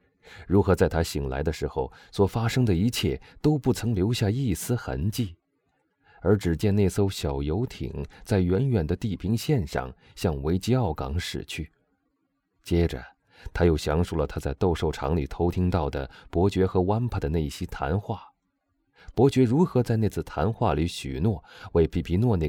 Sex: male